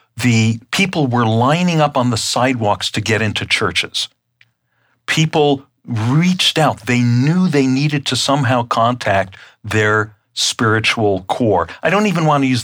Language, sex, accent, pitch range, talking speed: English, male, American, 110-135 Hz, 145 wpm